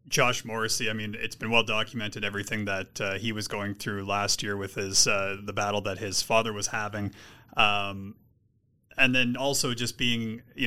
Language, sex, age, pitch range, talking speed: English, male, 30-49, 105-125 Hz, 190 wpm